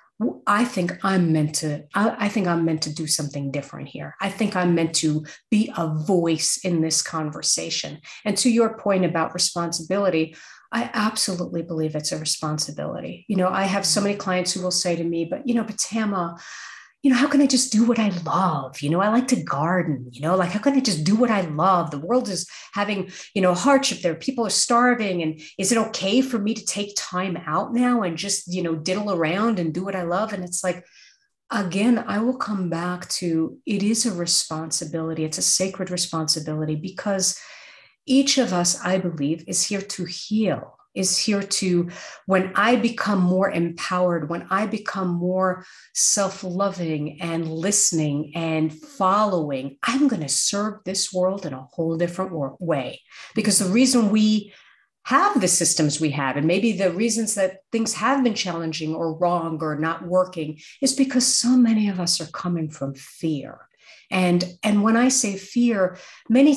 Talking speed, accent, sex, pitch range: 190 wpm, American, female, 165-215 Hz